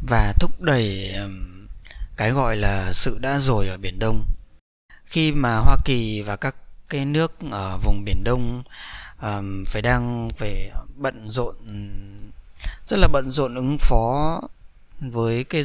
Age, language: 20-39, Vietnamese